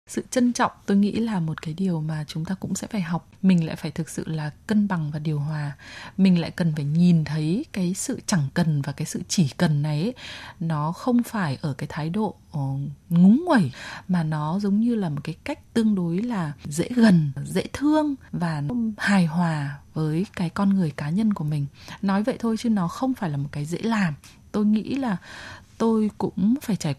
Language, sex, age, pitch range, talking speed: Vietnamese, female, 20-39, 155-210 Hz, 215 wpm